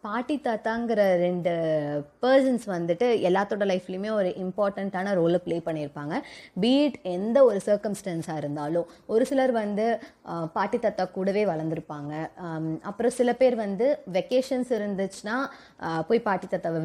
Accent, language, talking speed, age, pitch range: native, Tamil, 120 wpm, 20-39, 165-220 Hz